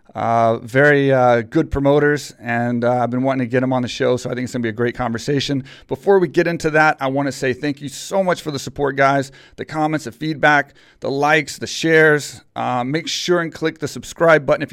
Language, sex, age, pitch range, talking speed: English, male, 30-49, 125-145 Hz, 245 wpm